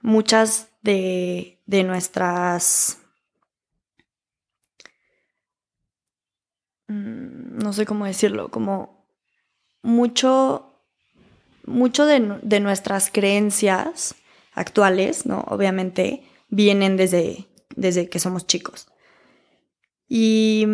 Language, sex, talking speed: Spanish, female, 70 wpm